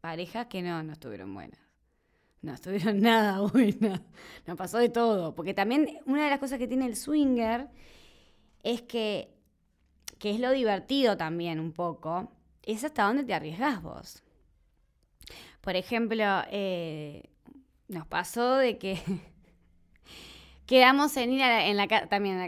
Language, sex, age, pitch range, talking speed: Spanish, female, 20-39, 170-250 Hz, 150 wpm